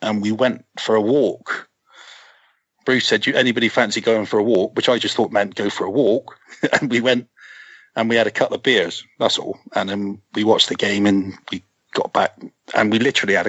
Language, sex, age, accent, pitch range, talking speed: English, male, 40-59, British, 105-115 Hz, 225 wpm